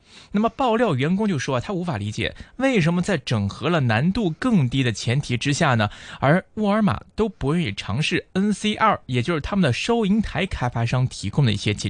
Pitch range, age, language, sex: 115-175 Hz, 20-39, Chinese, male